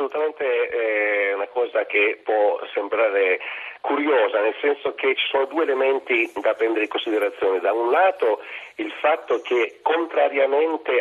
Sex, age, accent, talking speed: male, 40-59, native, 140 wpm